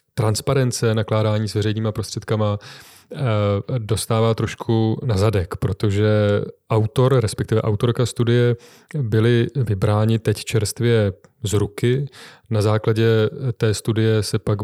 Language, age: Czech, 30-49